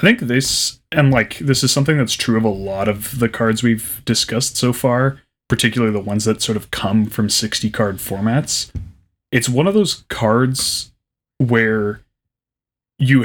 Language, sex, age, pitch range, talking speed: English, male, 20-39, 105-125 Hz, 170 wpm